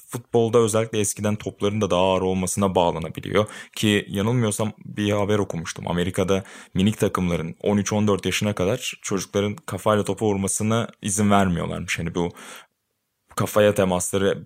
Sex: male